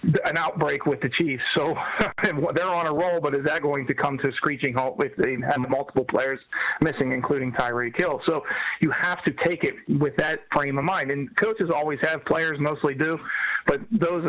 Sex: male